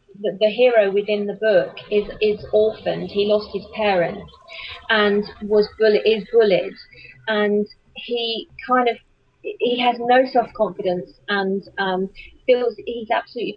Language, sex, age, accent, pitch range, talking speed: English, female, 30-49, British, 195-225 Hz, 140 wpm